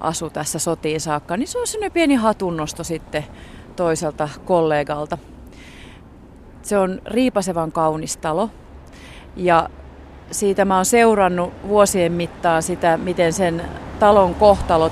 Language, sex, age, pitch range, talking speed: Finnish, female, 30-49, 155-190 Hz, 120 wpm